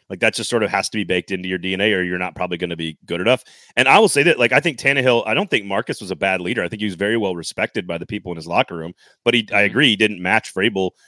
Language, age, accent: English, 30-49, American